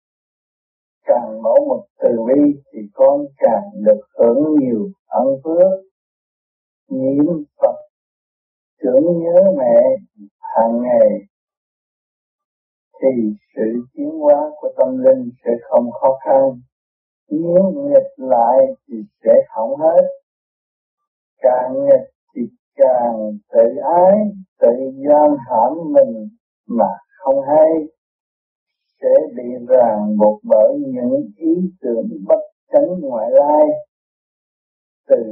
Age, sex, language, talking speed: 60-79, male, Vietnamese, 110 wpm